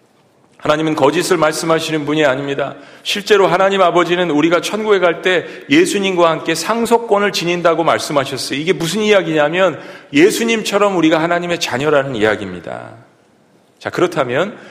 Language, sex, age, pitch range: Korean, male, 40-59, 145-185 Hz